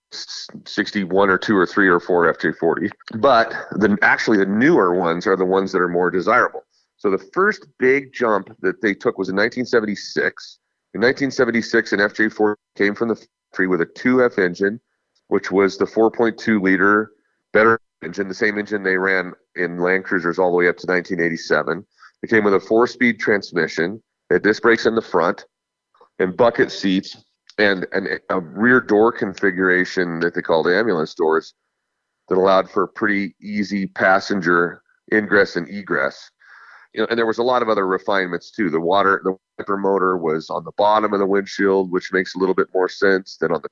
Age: 40-59